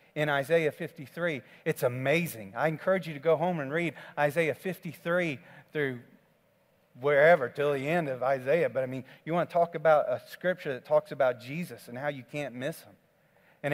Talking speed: 190 wpm